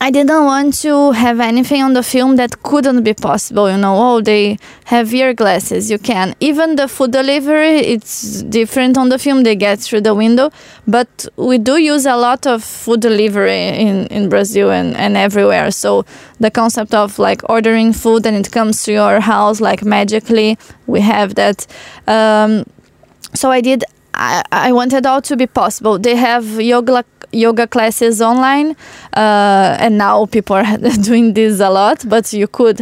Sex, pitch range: female, 210-245 Hz